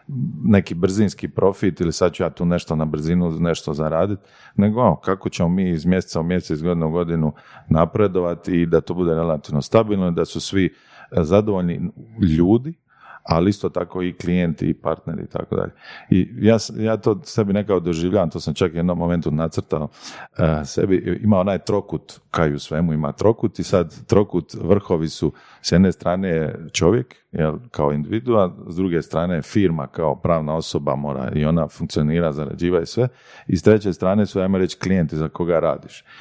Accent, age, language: native, 40-59, Croatian